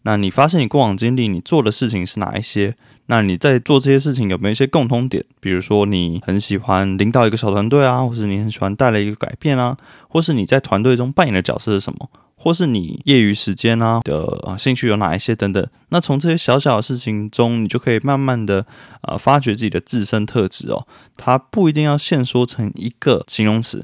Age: 20-39